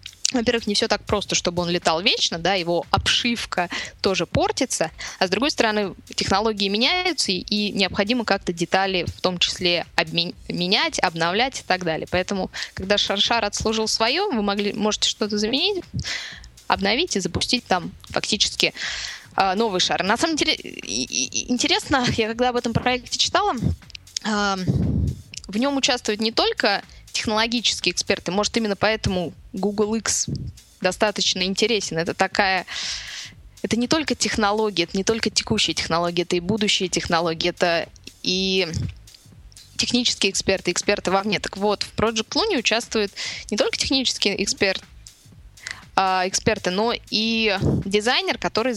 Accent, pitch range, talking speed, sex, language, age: native, 185-230 Hz, 135 wpm, female, Russian, 20-39